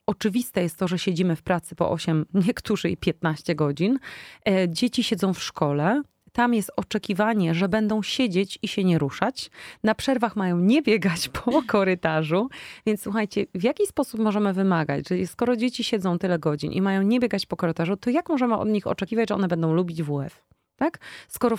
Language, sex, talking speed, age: Polish, female, 180 wpm, 30-49